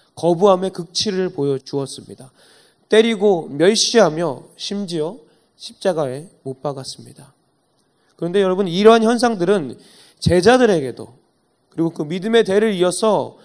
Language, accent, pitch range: Korean, native, 140-200 Hz